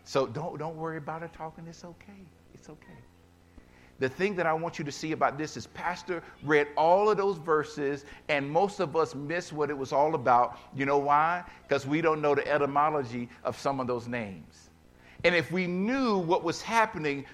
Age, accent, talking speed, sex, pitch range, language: 50-69, American, 205 wpm, male, 145-225 Hz, English